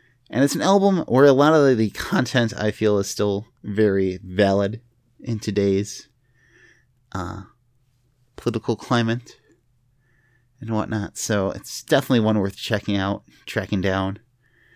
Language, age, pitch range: English, 30-49, 105-130 Hz